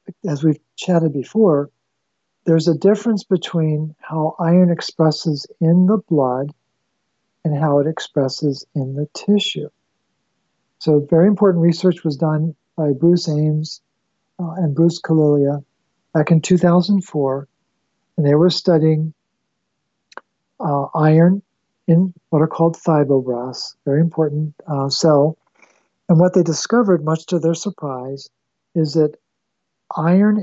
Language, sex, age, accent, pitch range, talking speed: Swedish, male, 50-69, American, 150-175 Hz, 125 wpm